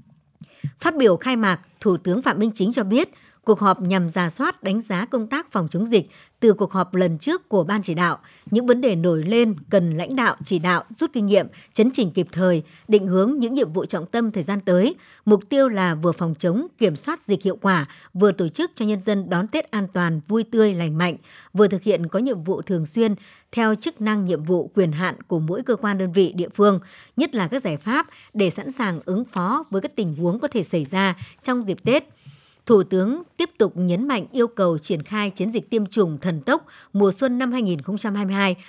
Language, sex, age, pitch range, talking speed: Vietnamese, male, 60-79, 180-230 Hz, 230 wpm